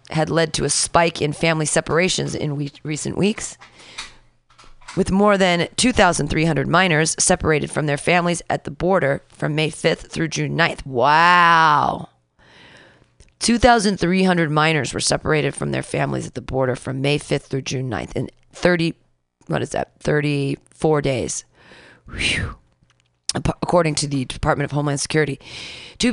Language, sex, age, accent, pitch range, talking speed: English, female, 30-49, American, 135-170 Hz, 145 wpm